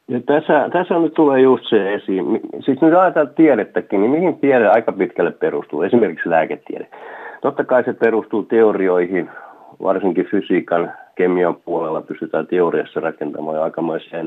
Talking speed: 145 wpm